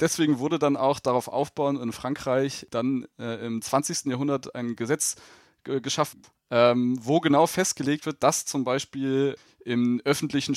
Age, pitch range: 20-39, 130-155 Hz